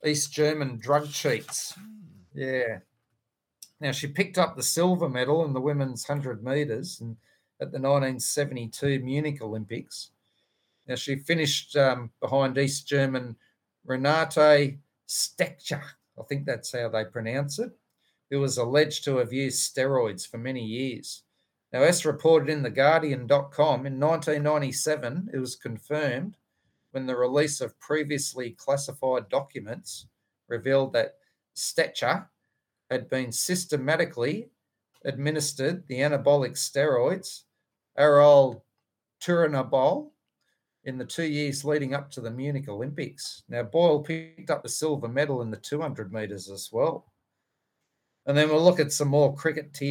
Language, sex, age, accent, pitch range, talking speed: English, male, 40-59, Australian, 130-150 Hz, 130 wpm